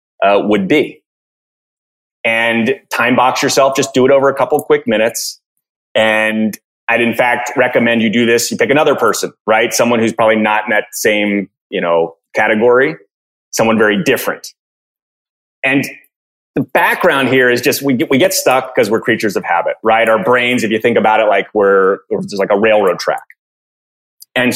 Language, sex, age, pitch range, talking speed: English, male, 30-49, 110-130 Hz, 185 wpm